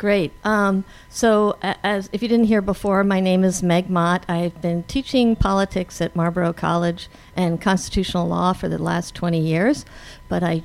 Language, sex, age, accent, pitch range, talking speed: English, female, 50-69, American, 165-195 Hz, 175 wpm